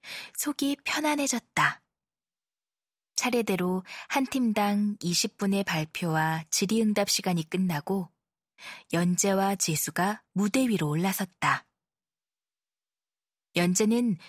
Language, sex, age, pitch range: Korean, female, 20-39, 175-235 Hz